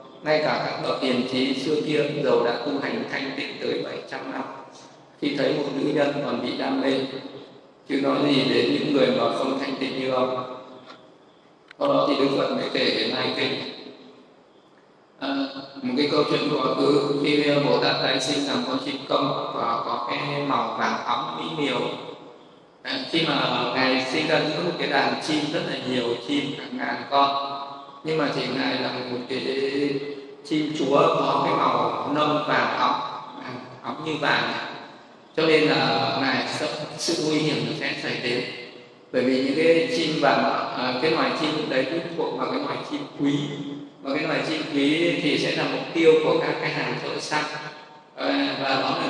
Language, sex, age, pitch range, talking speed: Vietnamese, male, 20-39, 130-150 Hz, 190 wpm